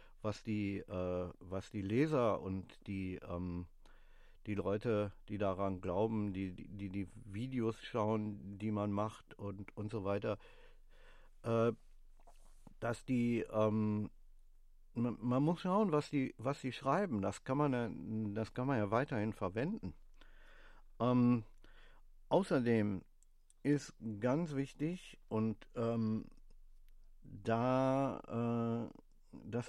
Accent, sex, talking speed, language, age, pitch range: German, male, 120 wpm, German, 50-69, 100-125 Hz